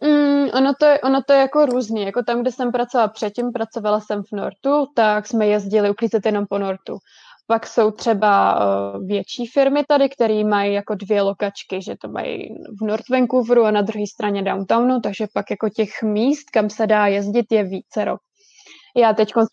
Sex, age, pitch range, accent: female, 20-39, 205-235 Hz, native